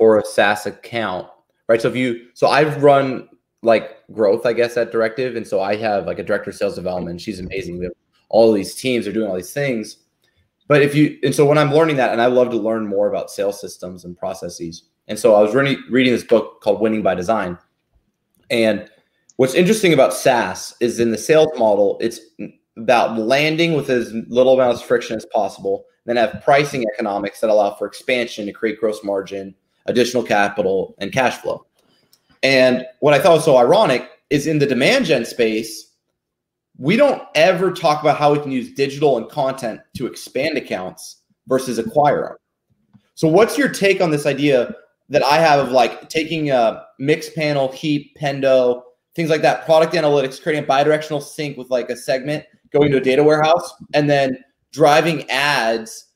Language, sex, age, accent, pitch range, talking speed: English, male, 20-39, American, 115-155 Hz, 195 wpm